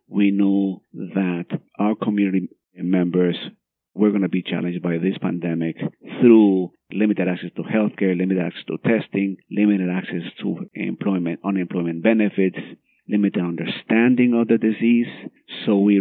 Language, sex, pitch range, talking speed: English, male, 90-110 Hz, 135 wpm